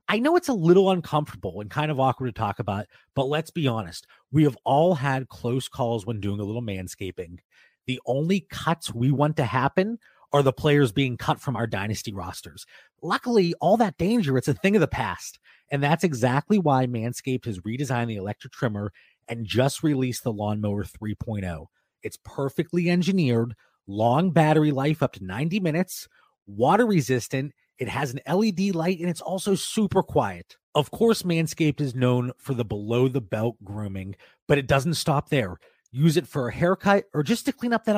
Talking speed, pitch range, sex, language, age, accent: 185 wpm, 115-165 Hz, male, English, 30-49, American